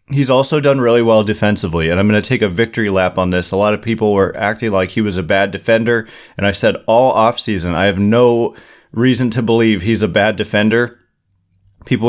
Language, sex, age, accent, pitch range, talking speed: English, male, 30-49, American, 105-125 Hz, 220 wpm